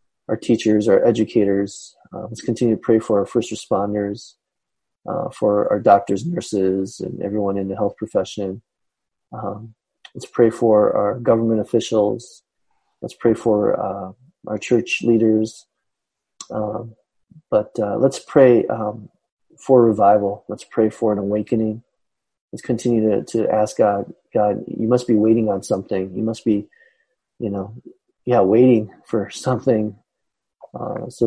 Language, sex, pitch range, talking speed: English, male, 105-120 Hz, 145 wpm